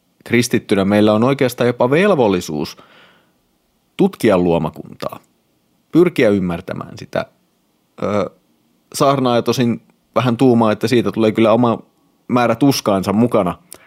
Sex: male